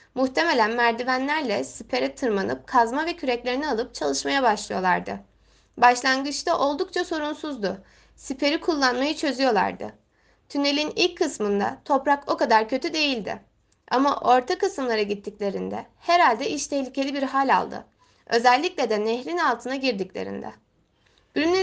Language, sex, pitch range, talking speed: Turkish, female, 205-290 Hz, 110 wpm